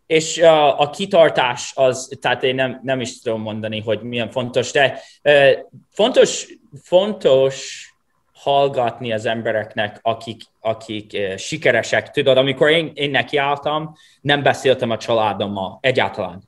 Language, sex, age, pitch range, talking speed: Hungarian, male, 20-39, 110-145 Hz, 125 wpm